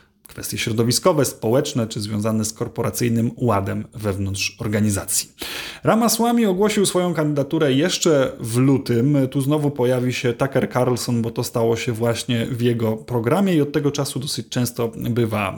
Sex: male